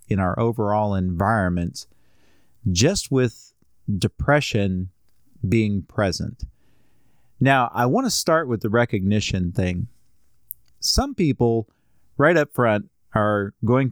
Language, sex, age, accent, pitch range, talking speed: English, male, 40-59, American, 95-125 Hz, 110 wpm